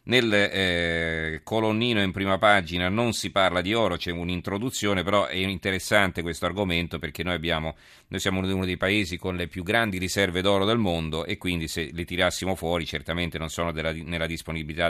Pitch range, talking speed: 80-100 Hz, 185 wpm